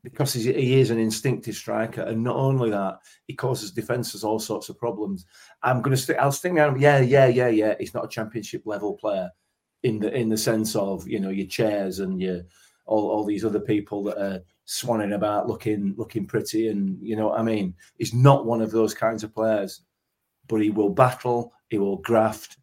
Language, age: English, 30-49